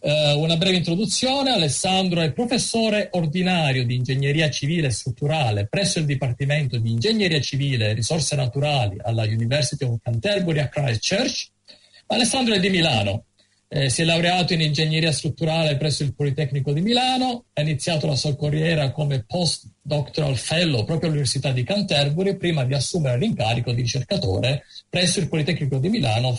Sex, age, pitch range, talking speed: male, 50-69, 130-170 Hz, 150 wpm